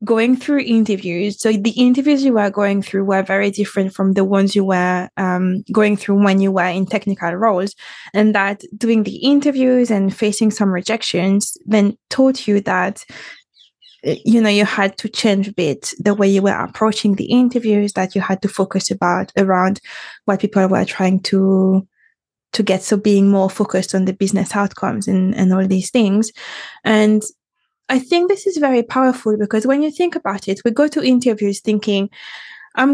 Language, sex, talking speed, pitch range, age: English, female, 185 wpm, 190-225 Hz, 20-39